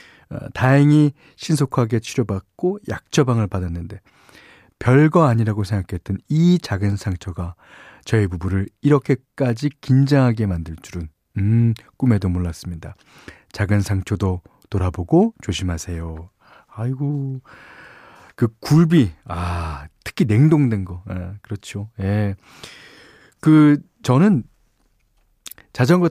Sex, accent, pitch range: male, native, 100-155 Hz